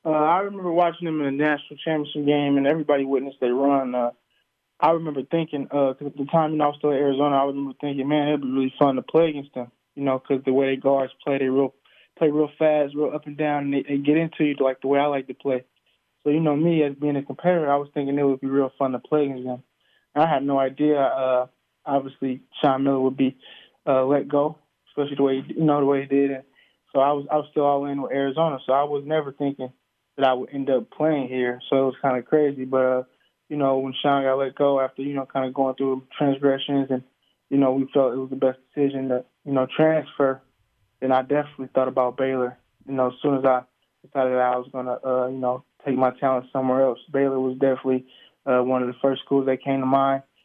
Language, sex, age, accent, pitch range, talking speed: English, male, 20-39, American, 130-145 Hz, 255 wpm